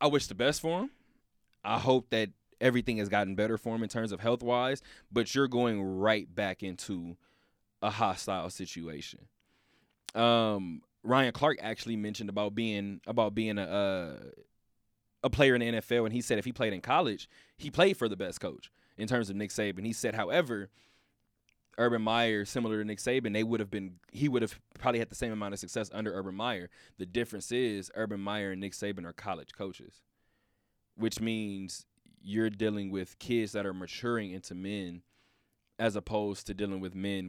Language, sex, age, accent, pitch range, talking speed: English, male, 20-39, American, 100-115 Hz, 190 wpm